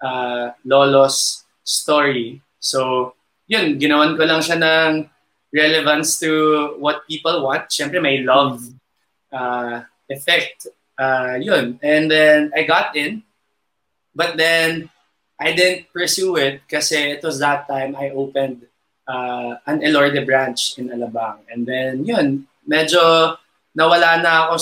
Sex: male